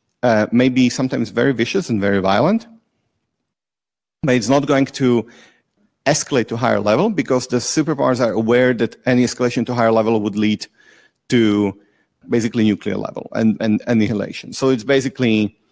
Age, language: 40-59, German